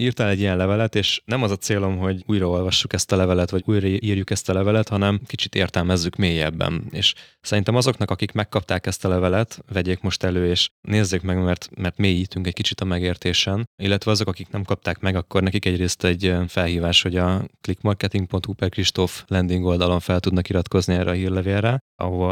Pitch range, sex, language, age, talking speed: 90-100 Hz, male, Hungarian, 20-39, 185 wpm